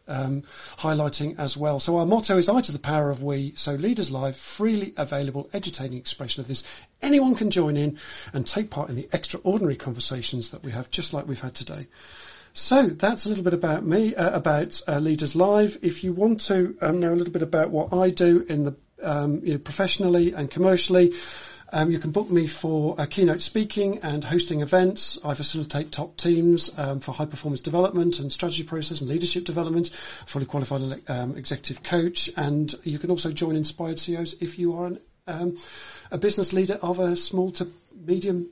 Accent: British